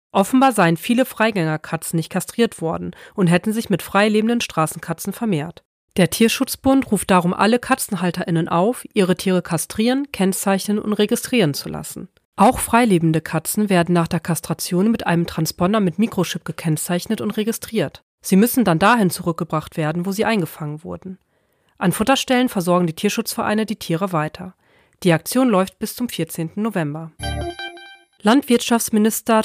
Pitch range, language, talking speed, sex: 170-225 Hz, German, 145 wpm, female